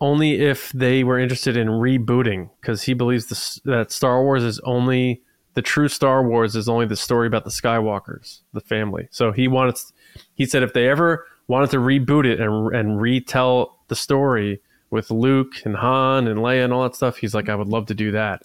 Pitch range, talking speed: 115-145 Hz, 210 wpm